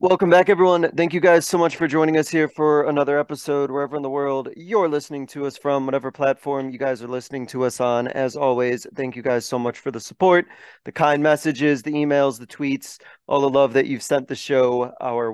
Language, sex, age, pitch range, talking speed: English, male, 30-49, 125-150 Hz, 230 wpm